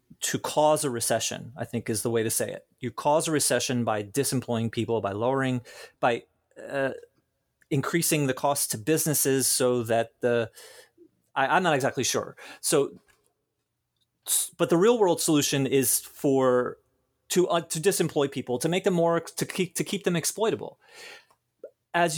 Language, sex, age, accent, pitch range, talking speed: English, male, 30-49, American, 120-160 Hz, 160 wpm